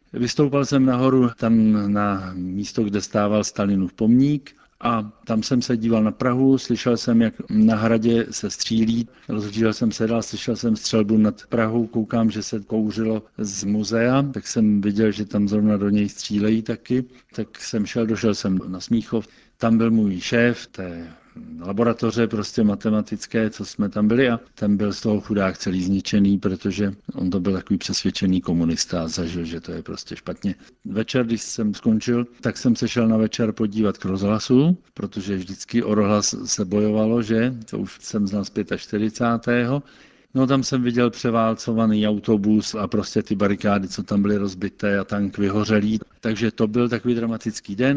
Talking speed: 170 wpm